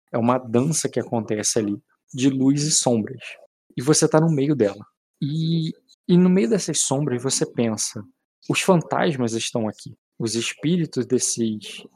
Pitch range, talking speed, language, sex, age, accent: 120-165 Hz, 155 wpm, Portuguese, male, 20-39, Brazilian